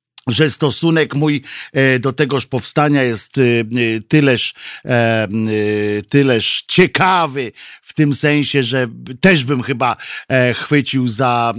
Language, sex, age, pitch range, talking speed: Polish, male, 50-69, 125-155 Hz, 100 wpm